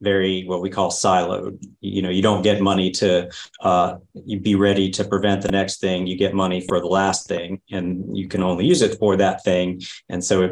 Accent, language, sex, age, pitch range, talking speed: American, English, male, 40-59, 95-100 Hz, 230 wpm